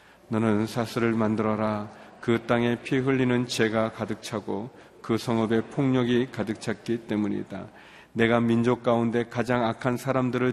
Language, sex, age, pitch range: Korean, male, 40-59, 110-120 Hz